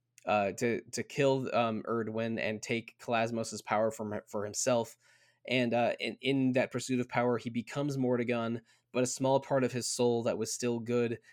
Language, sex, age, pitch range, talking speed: English, male, 20-39, 115-130 Hz, 185 wpm